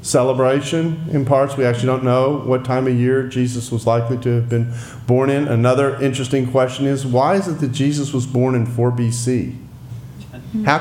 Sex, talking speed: male, 190 wpm